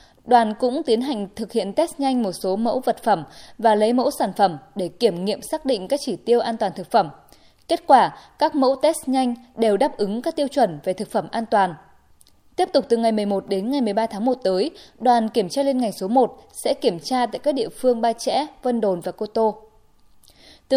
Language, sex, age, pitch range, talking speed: Vietnamese, female, 20-39, 205-265 Hz, 230 wpm